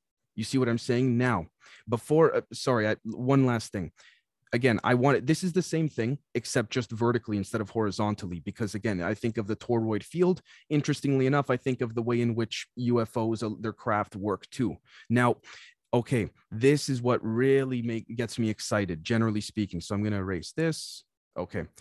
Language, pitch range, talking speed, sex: English, 110-130 Hz, 185 wpm, male